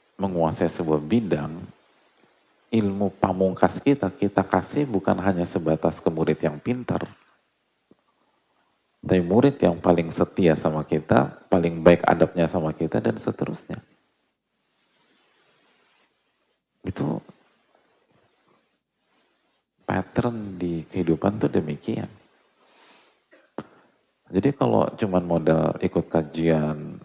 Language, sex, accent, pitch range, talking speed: English, male, Indonesian, 80-90 Hz, 90 wpm